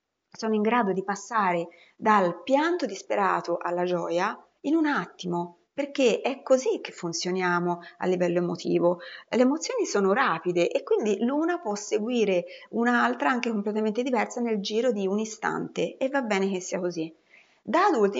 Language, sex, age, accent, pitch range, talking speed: Italian, female, 30-49, native, 175-245 Hz, 155 wpm